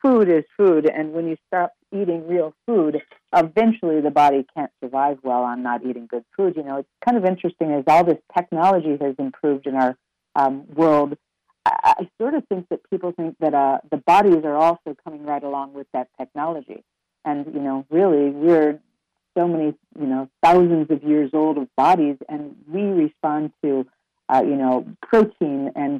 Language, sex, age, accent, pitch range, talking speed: English, female, 50-69, American, 140-175 Hz, 185 wpm